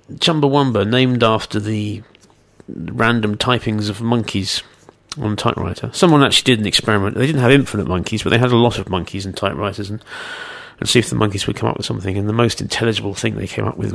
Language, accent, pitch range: English, British, 105-140 Hz